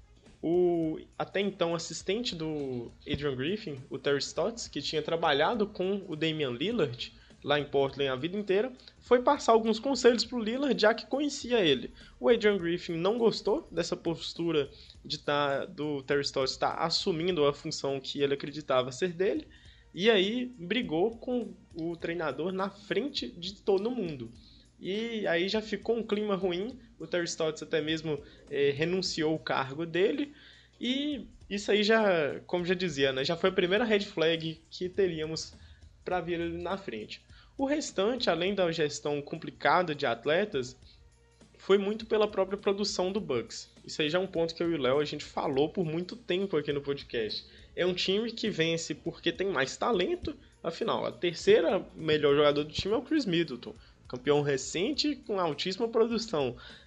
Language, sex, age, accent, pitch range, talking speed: Portuguese, male, 20-39, Brazilian, 150-210 Hz, 170 wpm